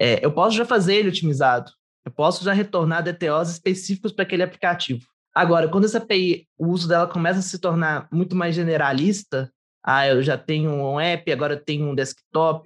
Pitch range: 150-195 Hz